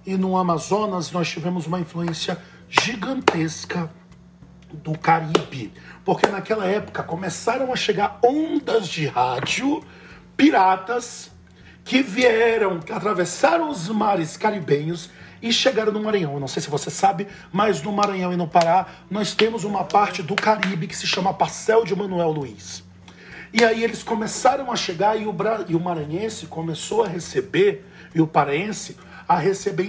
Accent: Brazilian